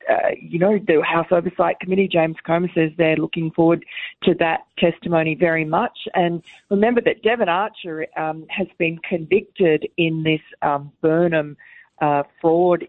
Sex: female